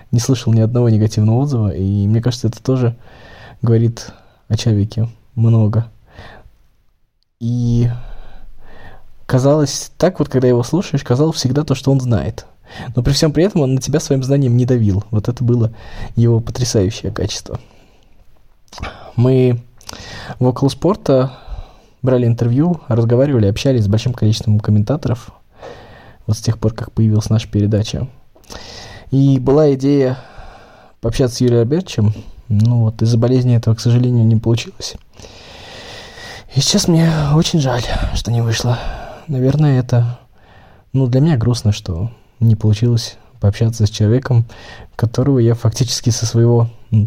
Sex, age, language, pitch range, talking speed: male, 20-39, Russian, 110-130 Hz, 135 wpm